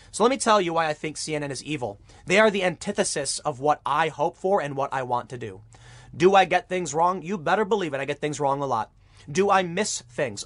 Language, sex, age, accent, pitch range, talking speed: English, male, 30-49, American, 135-195 Hz, 260 wpm